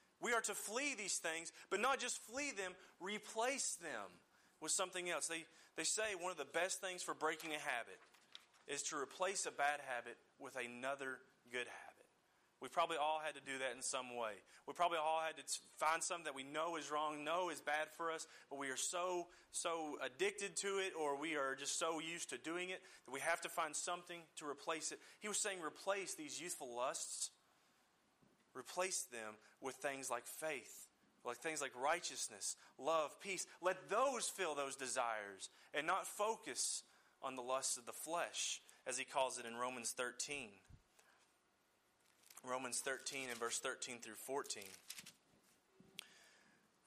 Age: 30-49